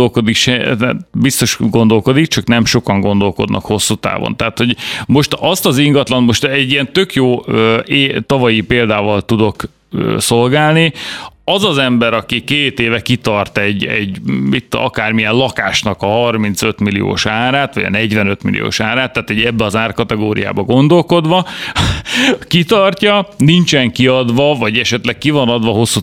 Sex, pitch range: male, 110-130 Hz